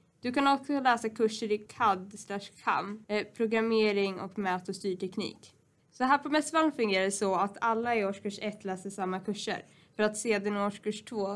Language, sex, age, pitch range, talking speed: Swedish, female, 10-29, 195-225 Hz, 180 wpm